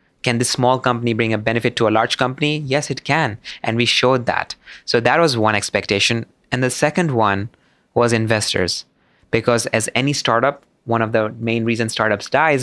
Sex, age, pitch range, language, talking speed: male, 20-39, 105-125 Hz, English, 190 wpm